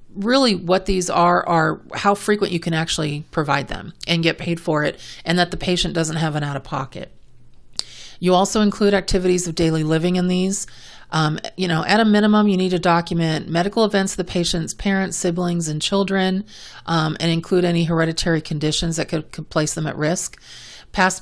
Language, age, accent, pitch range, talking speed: English, 40-59, American, 160-185 Hz, 190 wpm